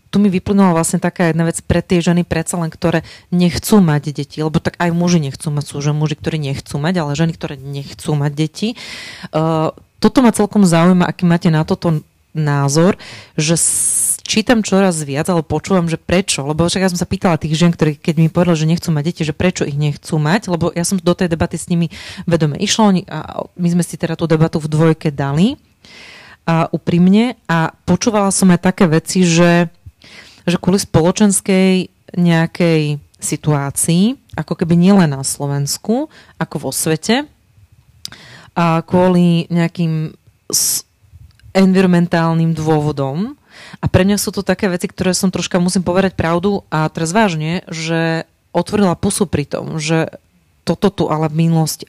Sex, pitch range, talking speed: female, 155-185 Hz, 170 wpm